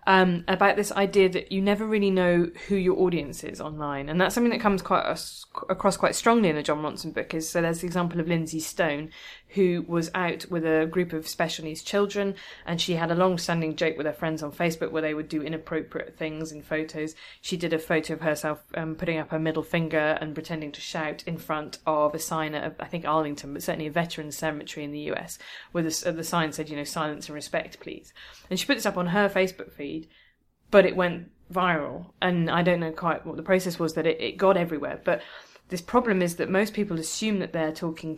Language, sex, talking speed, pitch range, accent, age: English, female, 235 wpm, 155-180 Hz, British, 20-39